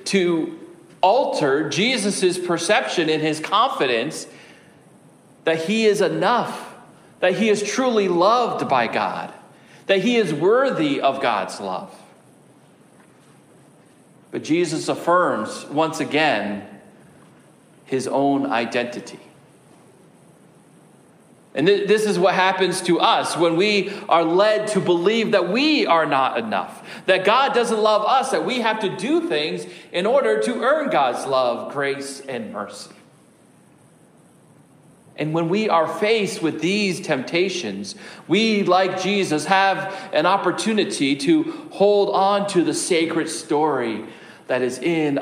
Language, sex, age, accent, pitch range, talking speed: English, male, 40-59, American, 155-210 Hz, 125 wpm